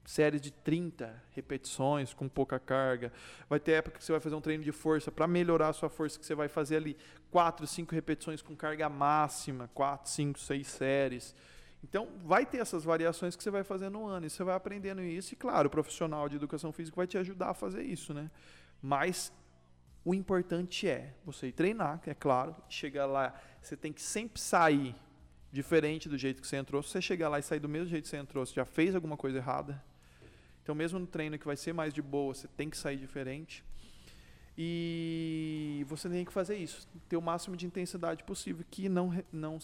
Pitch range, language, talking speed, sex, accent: 135-175 Hz, Portuguese, 205 wpm, male, Brazilian